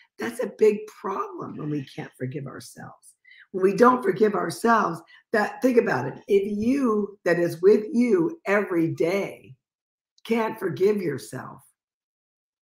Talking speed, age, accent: 140 wpm, 50-69, American